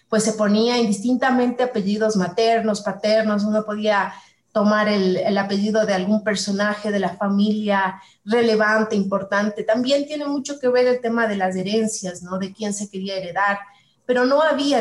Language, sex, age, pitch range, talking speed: Spanish, female, 30-49, 190-230 Hz, 160 wpm